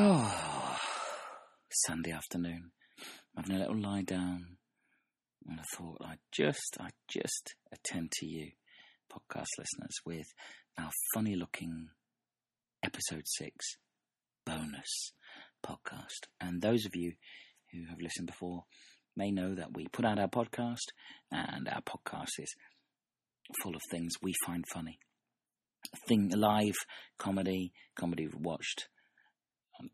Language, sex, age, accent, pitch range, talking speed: English, male, 40-59, British, 85-100 Hz, 120 wpm